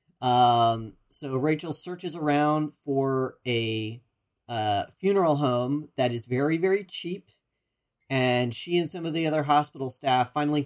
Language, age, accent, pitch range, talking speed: English, 30-49, American, 120-145 Hz, 140 wpm